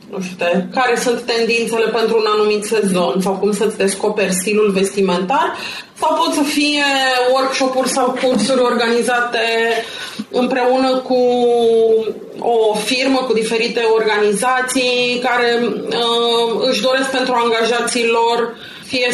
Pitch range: 220-250 Hz